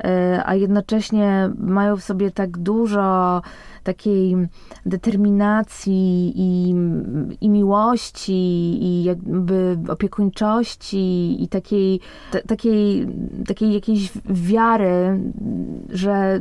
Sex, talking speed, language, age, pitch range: female, 85 wpm, Polish, 20-39, 170-200 Hz